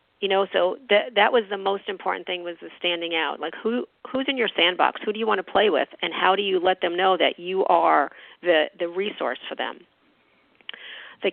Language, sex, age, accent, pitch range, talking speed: English, female, 40-59, American, 175-215 Hz, 230 wpm